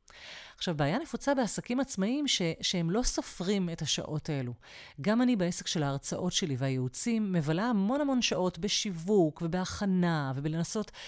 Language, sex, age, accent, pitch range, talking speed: Hebrew, female, 30-49, native, 155-220 Hz, 140 wpm